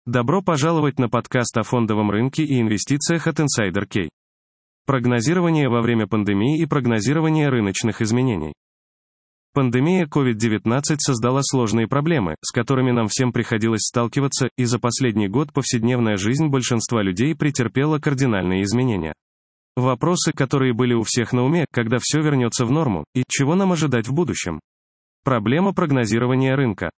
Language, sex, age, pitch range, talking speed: Russian, male, 20-39, 115-150 Hz, 140 wpm